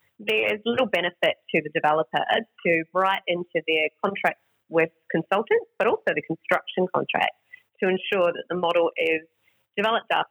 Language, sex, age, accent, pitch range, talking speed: English, female, 30-49, Australian, 160-210 Hz, 155 wpm